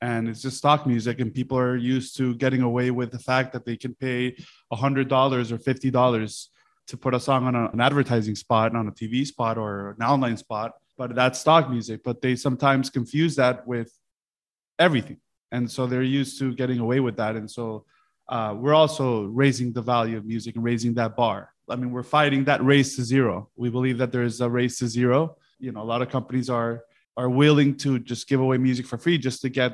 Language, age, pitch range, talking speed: English, 20-39, 120-135 Hz, 230 wpm